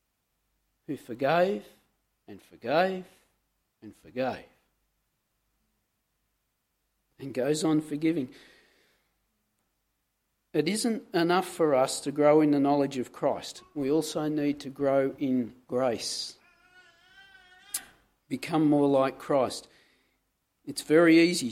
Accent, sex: Australian, male